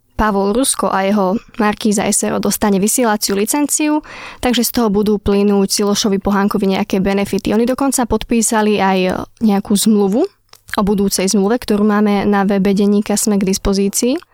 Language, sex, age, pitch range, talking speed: Slovak, female, 20-39, 205-230 Hz, 145 wpm